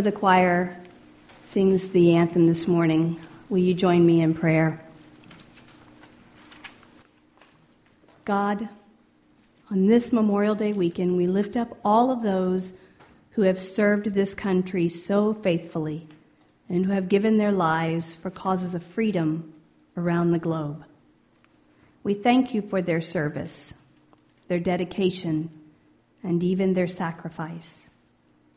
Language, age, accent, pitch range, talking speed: English, 50-69, American, 165-210 Hz, 120 wpm